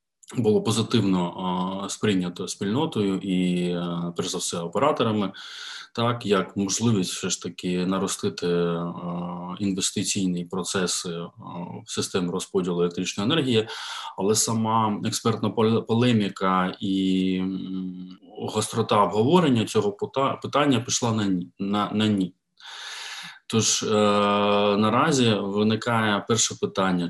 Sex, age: male, 20-39